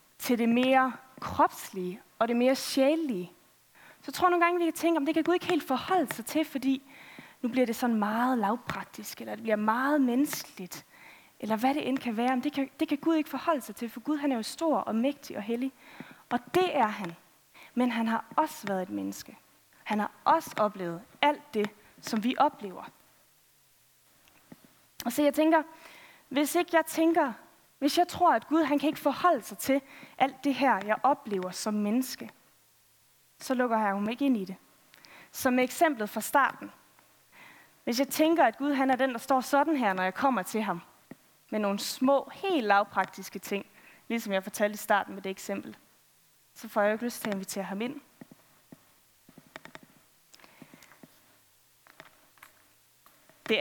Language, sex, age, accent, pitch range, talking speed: Danish, female, 20-39, native, 210-290 Hz, 185 wpm